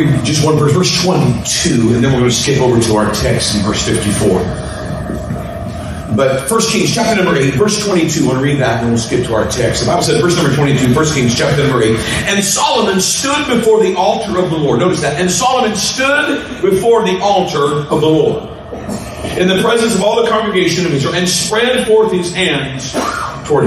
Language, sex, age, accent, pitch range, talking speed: English, male, 40-59, American, 145-215 Hz, 210 wpm